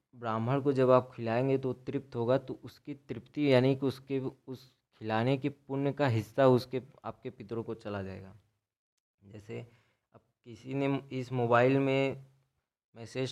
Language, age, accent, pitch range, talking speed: Hindi, 20-39, native, 110-130 Hz, 155 wpm